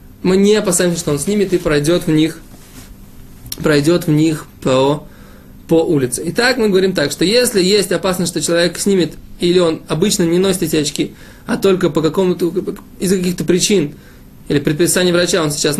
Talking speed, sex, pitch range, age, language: 175 wpm, male, 155-195 Hz, 20-39, Russian